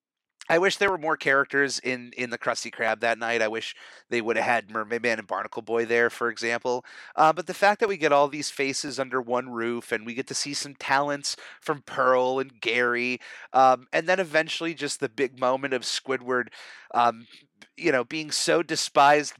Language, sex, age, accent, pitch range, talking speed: English, male, 30-49, American, 120-150 Hz, 205 wpm